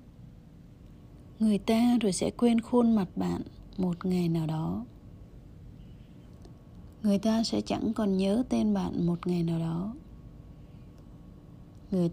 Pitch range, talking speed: 185-225 Hz, 125 wpm